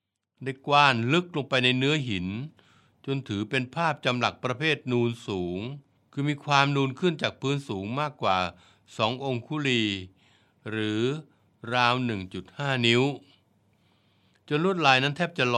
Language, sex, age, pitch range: Thai, male, 60-79, 105-135 Hz